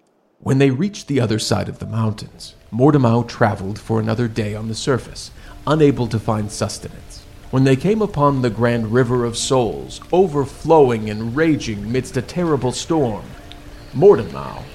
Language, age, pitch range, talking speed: English, 50-69, 110-135 Hz, 155 wpm